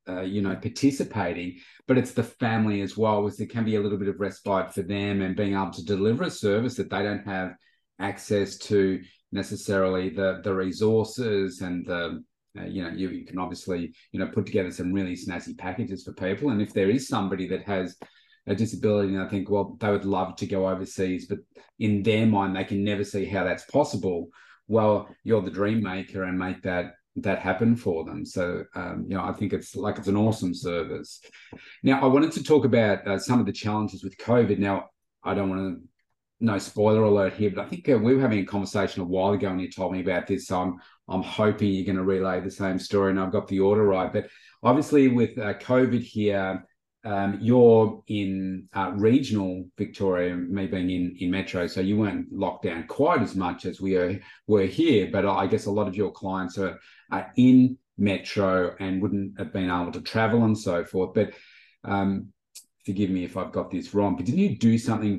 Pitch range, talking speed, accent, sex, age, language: 95-105 Hz, 215 wpm, Australian, male, 30-49, English